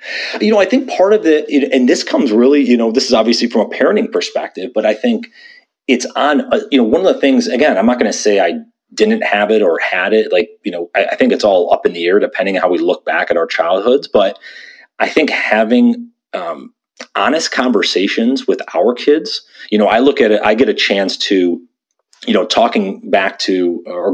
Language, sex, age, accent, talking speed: English, male, 30-49, American, 225 wpm